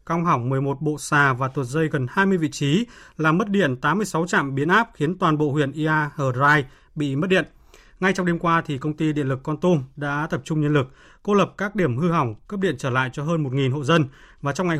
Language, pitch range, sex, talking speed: Vietnamese, 145-180 Hz, male, 250 wpm